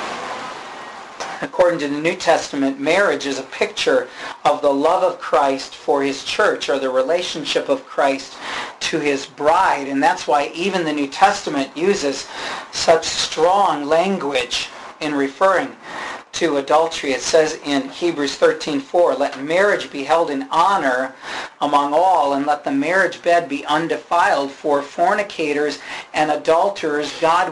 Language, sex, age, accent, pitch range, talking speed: English, male, 40-59, American, 140-180 Hz, 140 wpm